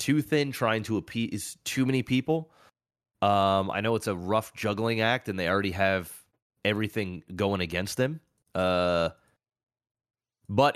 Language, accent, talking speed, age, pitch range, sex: English, American, 145 wpm, 30-49, 95-120 Hz, male